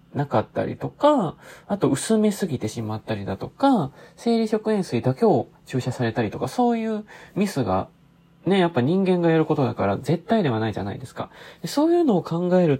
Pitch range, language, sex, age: 125-205 Hz, Japanese, male, 20-39